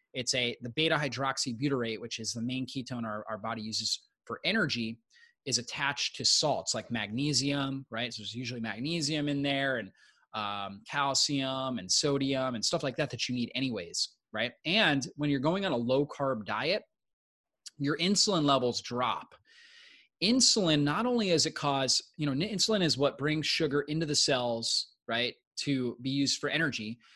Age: 20-39